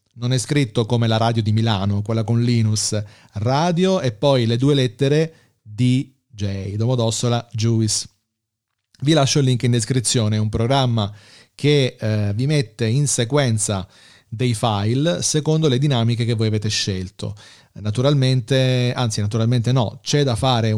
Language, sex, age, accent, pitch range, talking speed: Italian, male, 40-59, native, 110-135 Hz, 145 wpm